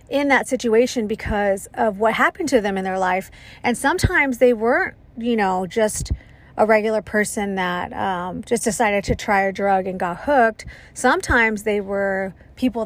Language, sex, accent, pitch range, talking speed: English, female, American, 200-245 Hz, 175 wpm